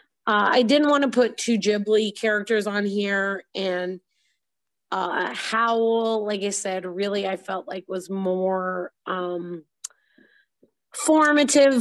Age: 30-49